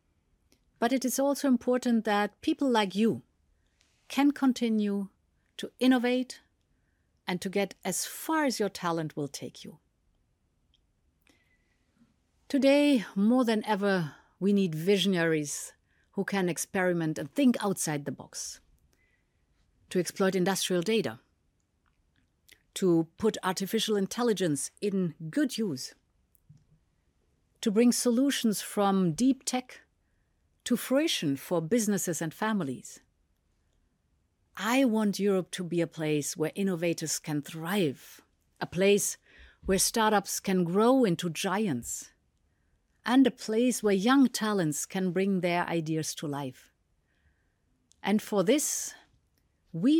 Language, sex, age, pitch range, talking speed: English, female, 50-69, 160-230 Hz, 115 wpm